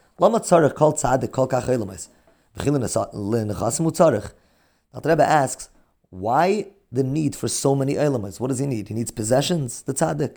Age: 30-49